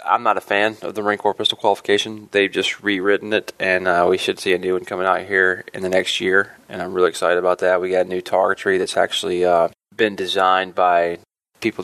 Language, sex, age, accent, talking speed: English, male, 20-39, American, 240 wpm